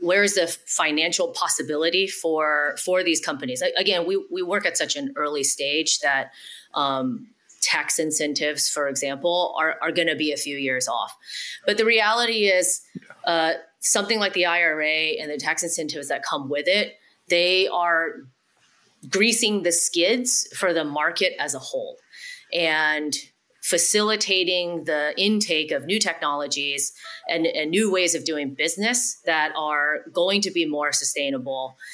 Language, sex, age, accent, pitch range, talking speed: English, female, 30-49, American, 150-215 Hz, 155 wpm